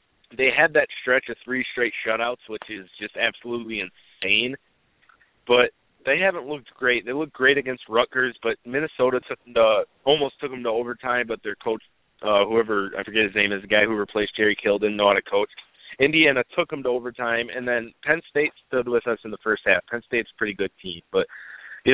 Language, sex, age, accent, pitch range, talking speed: English, male, 20-39, American, 105-130 Hz, 215 wpm